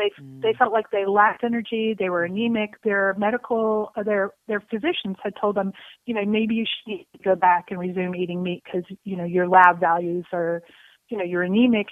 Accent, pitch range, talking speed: American, 185-225 Hz, 200 wpm